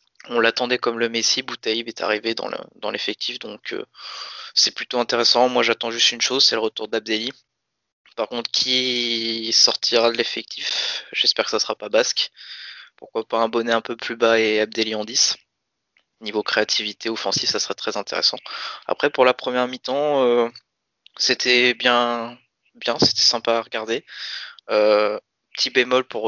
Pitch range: 110-120 Hz